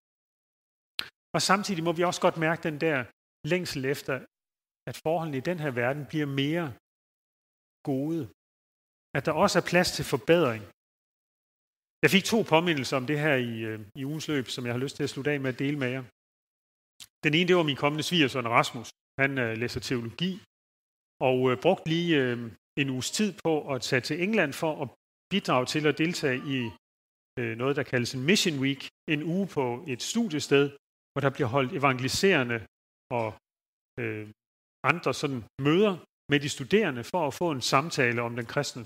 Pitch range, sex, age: 130-175 Hz, male, 30-49